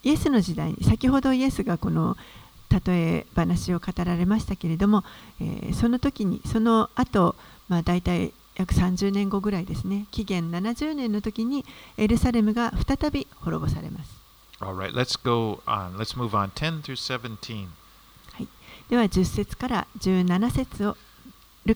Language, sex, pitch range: Japanese, female, 175-230 Hz